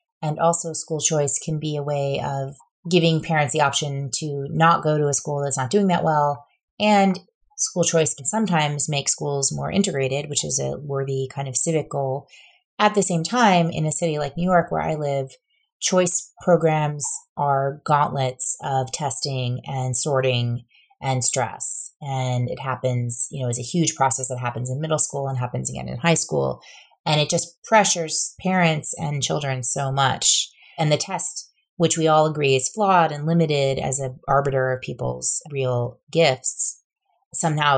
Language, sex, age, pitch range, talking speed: English, female, 30-49, 130-165 Hz, 180 wpm